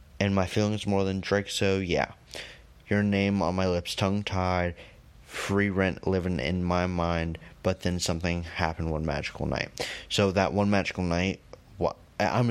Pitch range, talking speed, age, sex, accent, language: 85-100 Hz, 160 wpm, 20-39, male, American, English